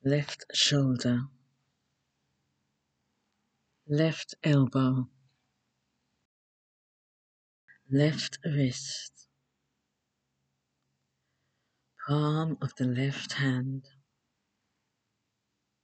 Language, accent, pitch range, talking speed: English, British, 120-145 Hz, 40 wpm